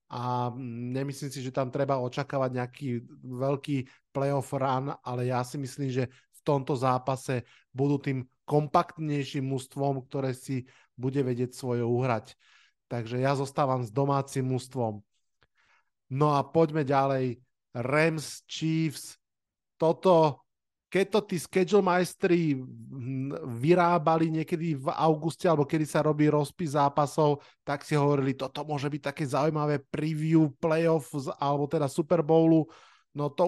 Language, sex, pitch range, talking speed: Slovak, male, 130-150 Hz, 130 wpm